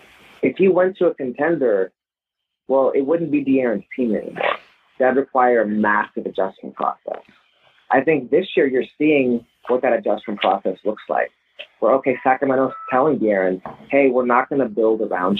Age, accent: 30-49, American